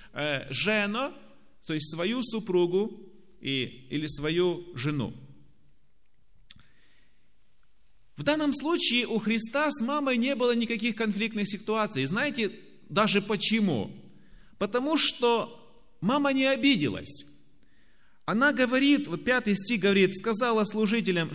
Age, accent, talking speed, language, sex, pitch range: 30-49, native, 105 wpm, Russian, male, 160-230 Hz